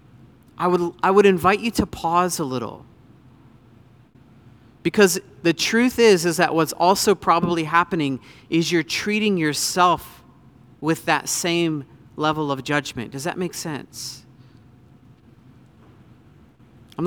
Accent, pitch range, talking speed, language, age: American, 125-180 Hz, 125 wpm, English, 40-59